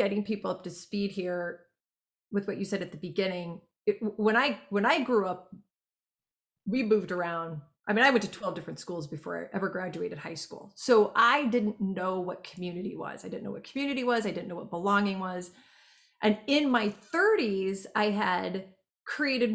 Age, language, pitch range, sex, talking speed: 30-49, English, 185-235 Hz, female, 190 wpm